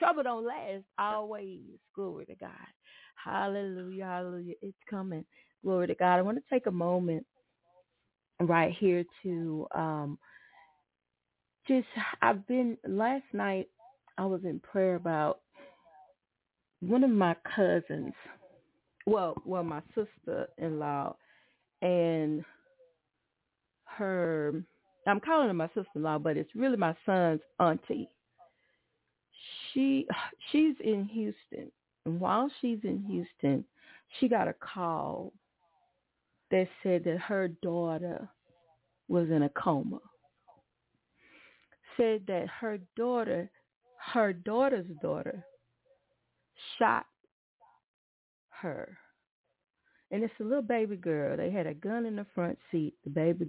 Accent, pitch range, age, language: American, 165-225 Hz, 30-49, English